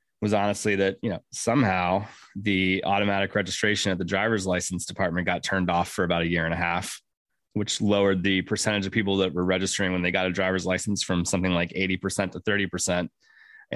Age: 20-39